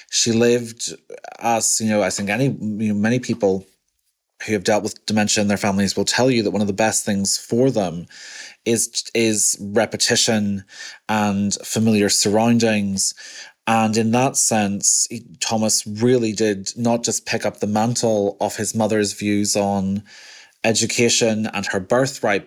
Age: 30-49